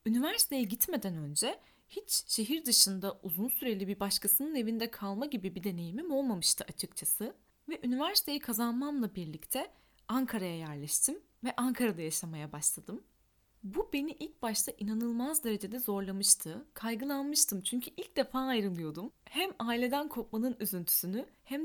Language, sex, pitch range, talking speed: Turkish, female, 195-270 Hz, 120 wpm